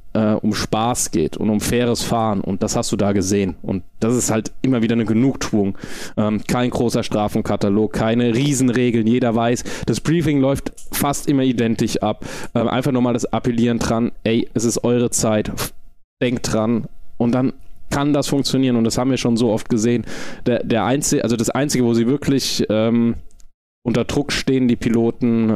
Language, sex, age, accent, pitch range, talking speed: German, male, 20-39, German, 105-125 Hz, 180 wpm